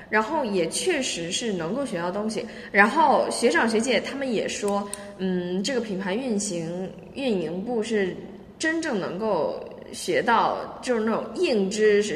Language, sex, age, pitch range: Chinese, female, 20-39, 205-310 Hz